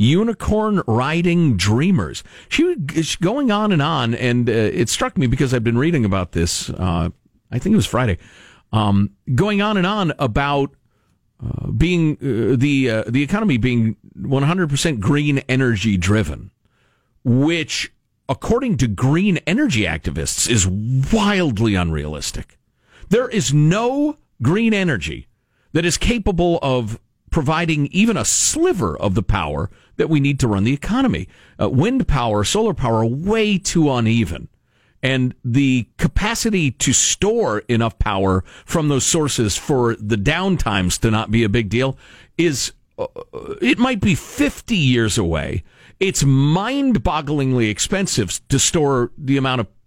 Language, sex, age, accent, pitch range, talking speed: English, male, 50-69, American, 115-175 Hz, 145 wpm